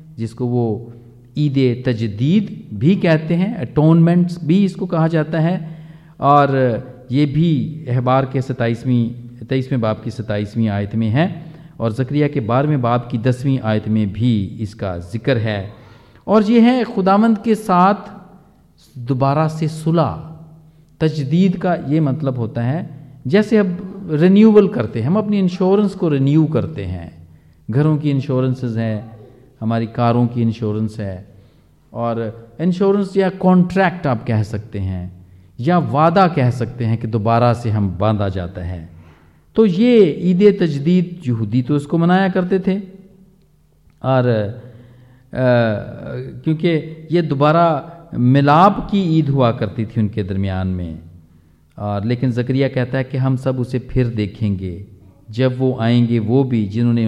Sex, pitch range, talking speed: male, 115-165 Hz, 140 wpm